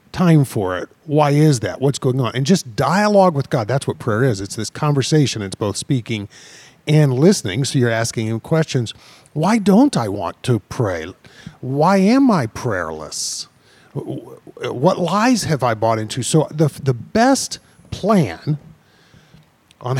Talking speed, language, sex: 160 wpm, English, male